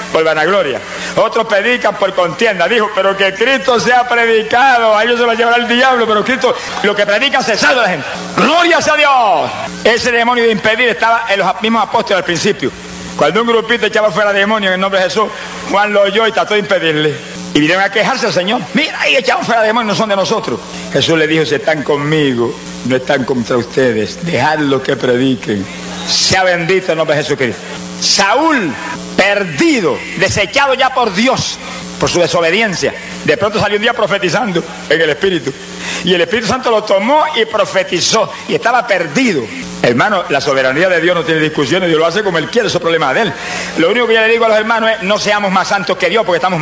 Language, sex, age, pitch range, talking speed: Spanish, male, 60-79, 170-235 Hz, 210 wpm